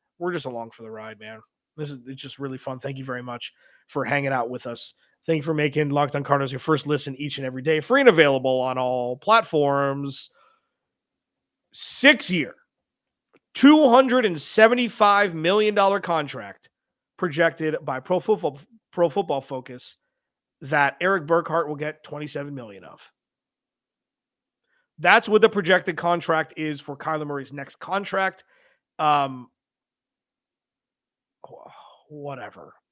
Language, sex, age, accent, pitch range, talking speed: English, male, 30-49, American, 140-180 Hz, 135 wpm